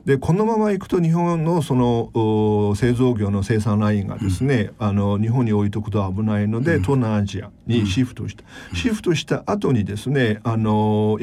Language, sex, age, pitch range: Japanese, male, 40-59, 105-140 Hz